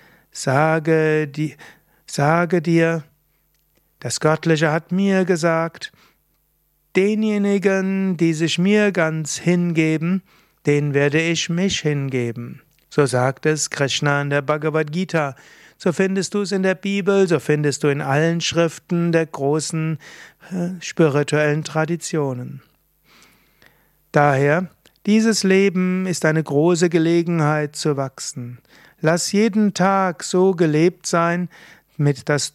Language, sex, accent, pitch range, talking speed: German, male, German, 150-180 Hz, 110 wpm